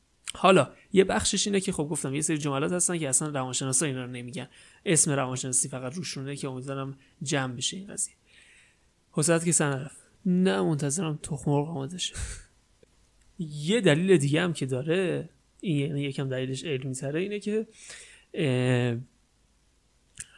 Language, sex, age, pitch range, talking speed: Persian, male, 30-49, 135-180 Hz, 145 wpm